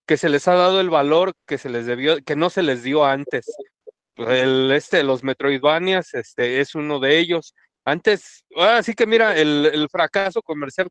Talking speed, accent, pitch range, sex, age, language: 185 wpm, Mexican, 130-180 Hz, male, 40-59, Spanish